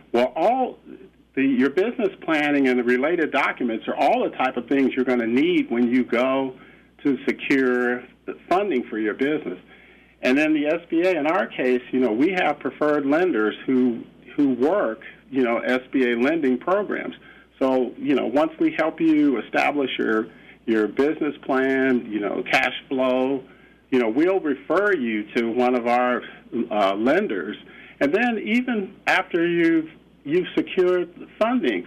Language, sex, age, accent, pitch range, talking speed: English, male, 50-69, American, 120-150 Hz, 160 wpm